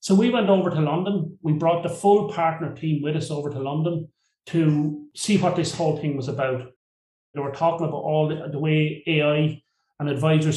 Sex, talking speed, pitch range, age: male, 205 wpm, 145-170 Hz, 30-49